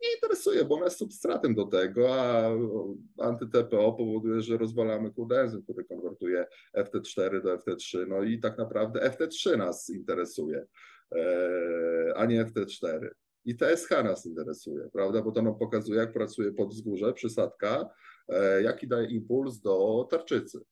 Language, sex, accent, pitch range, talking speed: Polish, male, native, 100-120 Hz, 135 wpm